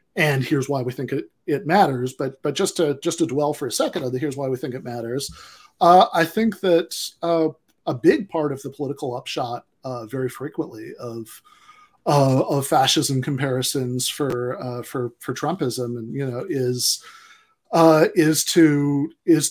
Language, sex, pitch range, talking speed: English, male, 130-165 Hz, 180 wpm